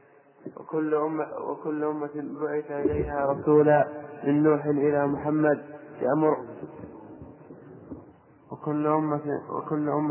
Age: 20-39